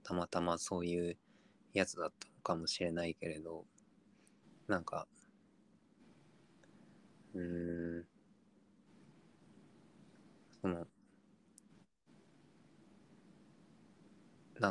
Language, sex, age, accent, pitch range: Japanese, male, 20-39, native, 85-105 Hz